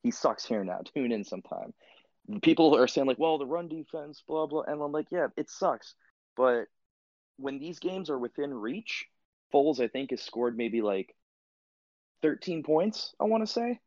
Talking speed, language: 185 wpm, English